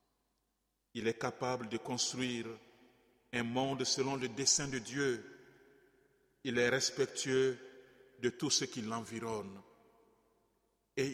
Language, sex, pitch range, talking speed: French, male, 120-145 Hz, 115 wpm